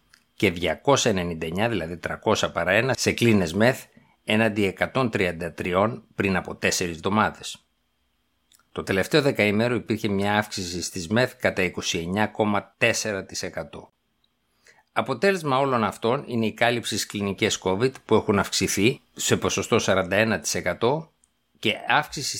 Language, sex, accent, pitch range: Greek, male, native, 95-120 Hz